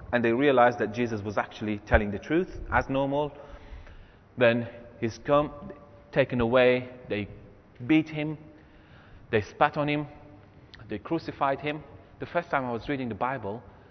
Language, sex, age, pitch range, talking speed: English, male, 30-49, 100-150 Hz, 150 wpm